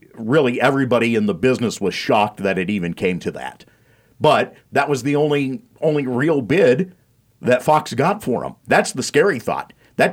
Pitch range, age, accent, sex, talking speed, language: 115-140 Hz, 50-69, American, male, 185 wpm, English